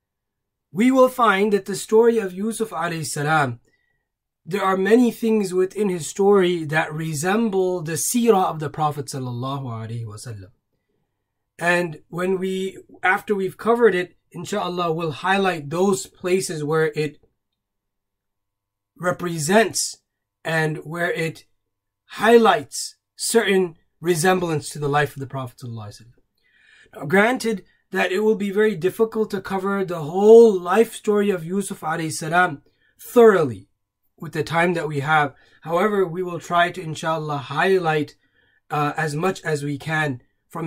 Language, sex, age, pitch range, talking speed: English, male, 20-39, 145-200 Hz, 140 wpm